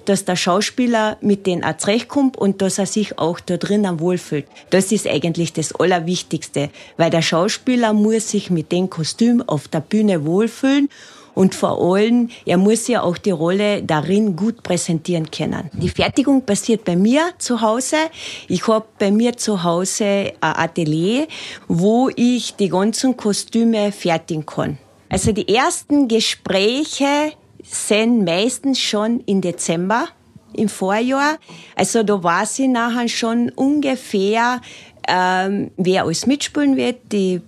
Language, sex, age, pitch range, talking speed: German, female, 30-49, 175-230 Hz, 145 wpm